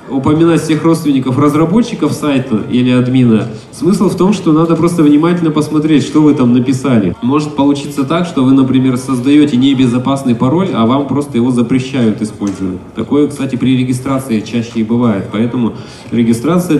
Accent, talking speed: native, 155 wpm